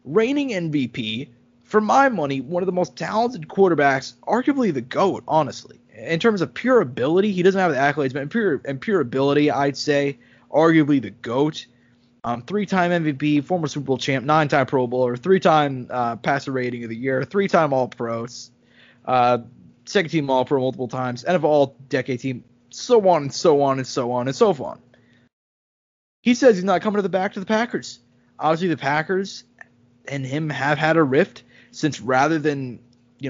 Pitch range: 125-165 Hz